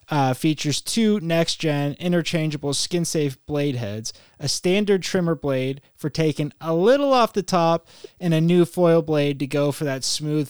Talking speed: 165 wpm